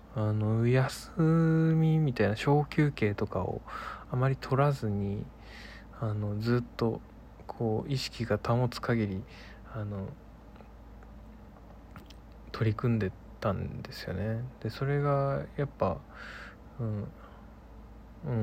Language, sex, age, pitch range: Japanese, male, 20-39, 100-130 Hz